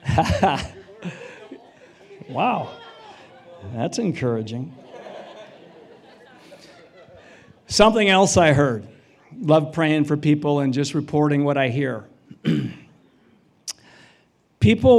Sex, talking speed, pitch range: male, 70 wpm, 130-155 Hz